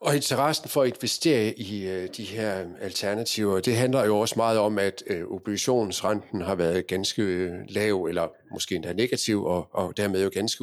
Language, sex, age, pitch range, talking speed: Danish, male, 50-69, 100-125 Hz, 165 wpm